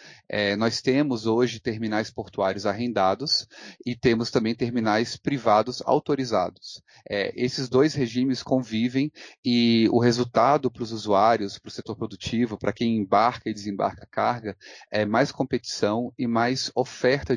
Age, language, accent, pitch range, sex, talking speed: 30-49, Portuguese, Brazilian, 105-120 Hz, male, 130 wpm